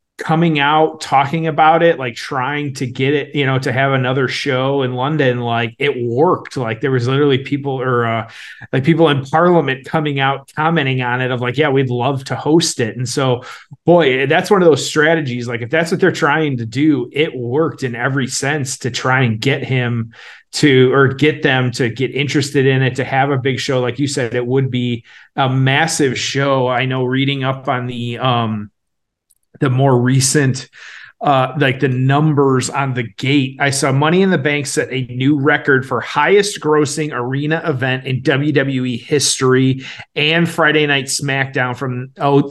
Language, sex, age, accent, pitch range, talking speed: English, male, 30-49, American, 130-150 Hz, 190 wpm